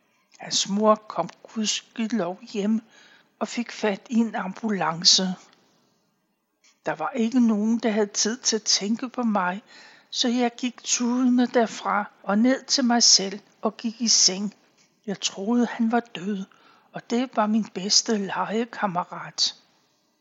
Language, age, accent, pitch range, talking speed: Danish, 60-79, native, 195-235 Hz, 145 wpm